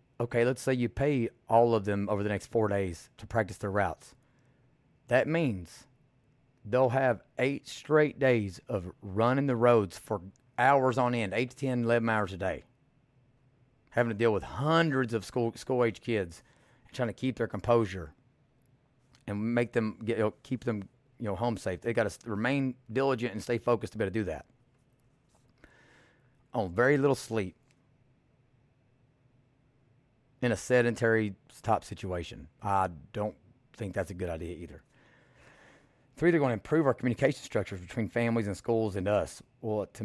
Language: English